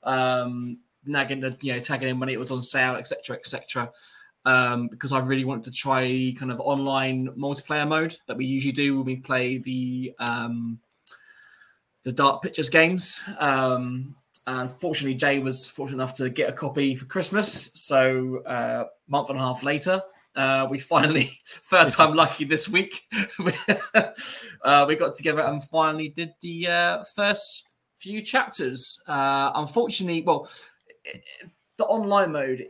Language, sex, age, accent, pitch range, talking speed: English, male, 20-39, British, 130-160 Hz, 160 wpm